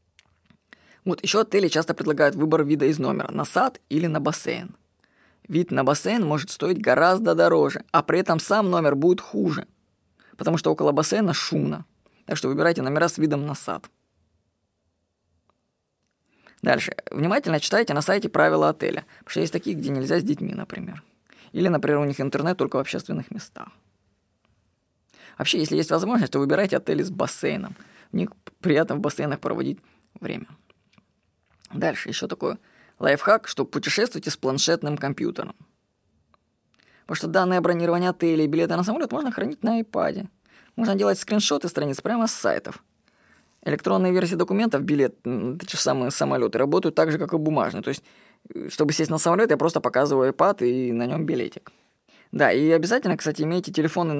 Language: Russian